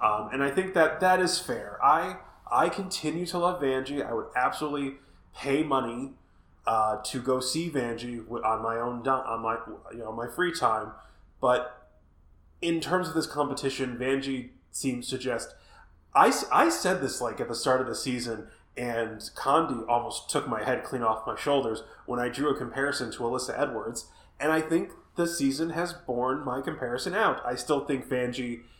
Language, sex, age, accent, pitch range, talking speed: English, male, 20-39, American, 115-145 Hz, 180 wpm